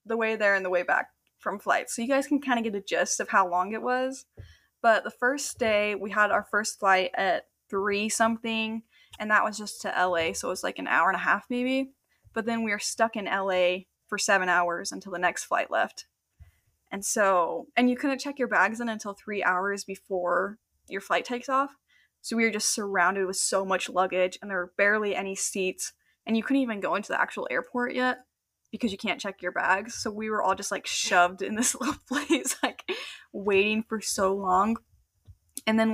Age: 10-29